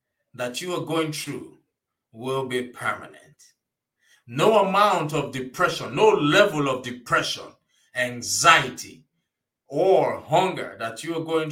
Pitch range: 125-160 Hz